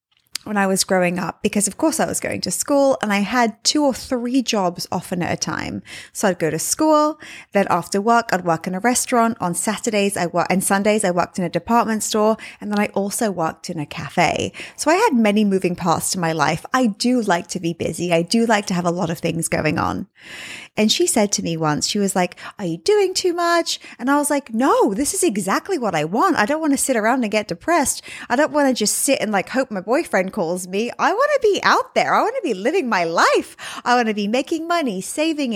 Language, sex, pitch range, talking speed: English, female, 190-280 Hz, 255 wpm